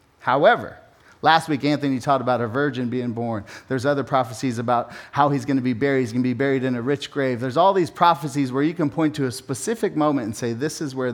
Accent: American